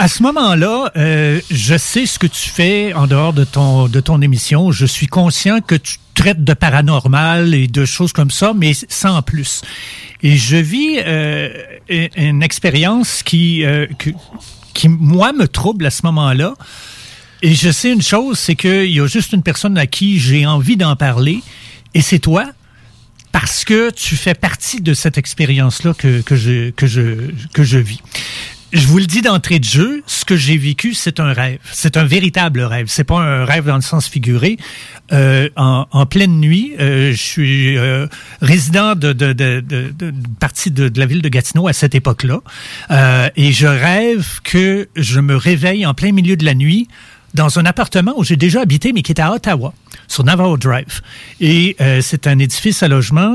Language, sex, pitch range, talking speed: French, male, 135-175 Hz, 195 wpm